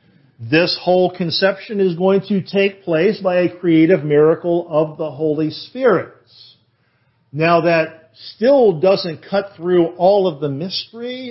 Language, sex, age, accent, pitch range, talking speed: English, male, 50-69, American, 145-190 Hz, 140 wpm